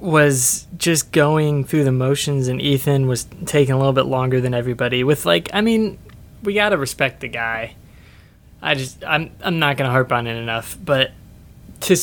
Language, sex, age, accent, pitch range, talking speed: English, male, 20-39, American, 120-150 Hz, 195 wpm